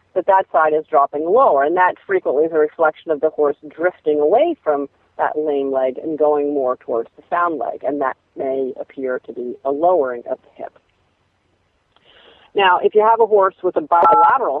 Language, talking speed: English, 195 wpm